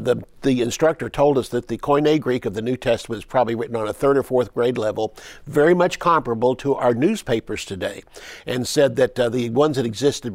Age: 50-69